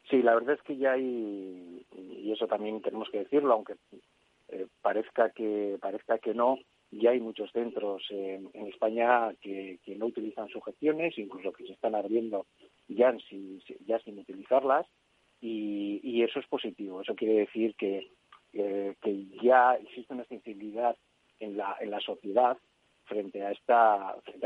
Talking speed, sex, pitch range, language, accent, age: 160 wpm, male, 105-120 Hz, Spanish, Spanish, 40-59